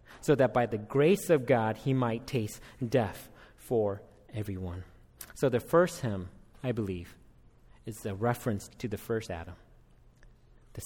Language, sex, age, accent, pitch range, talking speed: English, male, 30-49, American, 105-165 Hz, 150 wpm